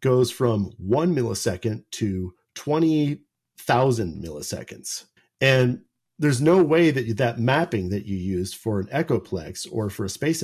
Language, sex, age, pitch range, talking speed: English, male, 40-59, 110-145 Hz, 155 wpm